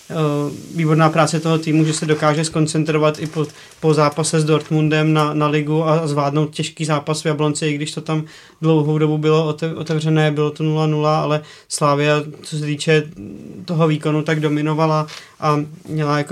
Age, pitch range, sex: 30-49, 155-165 Hz, male